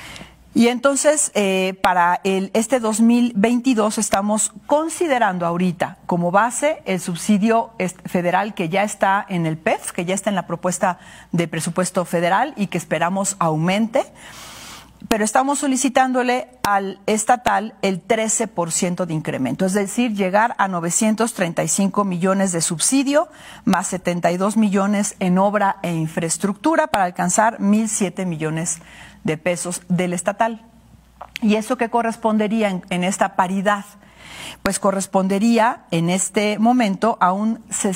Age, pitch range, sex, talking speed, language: 40-59, 180-225 Hz, female, 130 wpm, Spanish